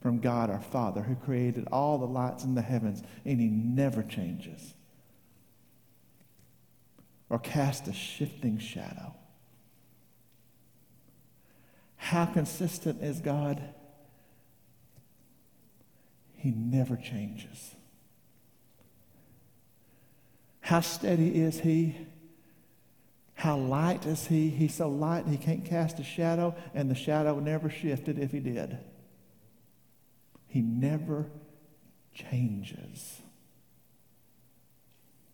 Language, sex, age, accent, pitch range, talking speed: English, male, 50-69, American, 120-155 Hz, 95 wpm